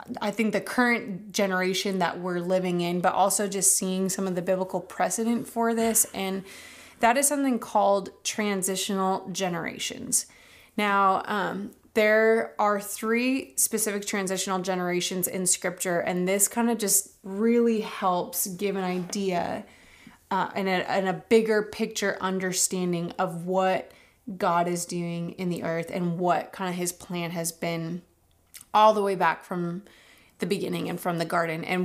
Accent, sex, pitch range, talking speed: American, female, 180-205 Hz, 155 wpm